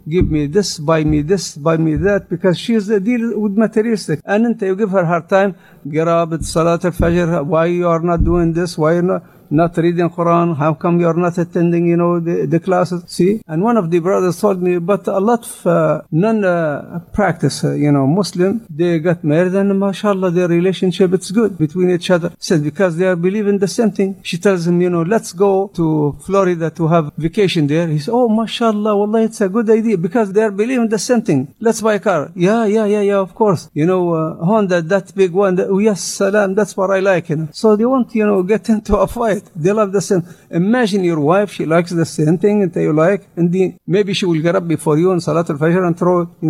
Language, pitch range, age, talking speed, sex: English, 165-205 Hz, 50-69, 230 wpm, male